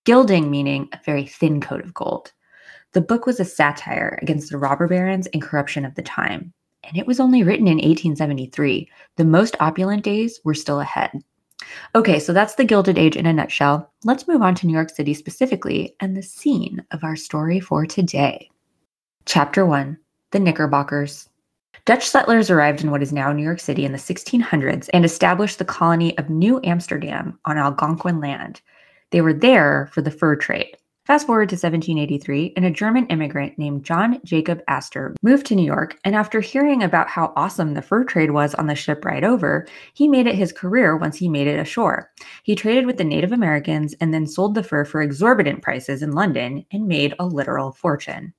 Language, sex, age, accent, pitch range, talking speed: English, female, 20-39, American, 150-195 Hz, 195 wpm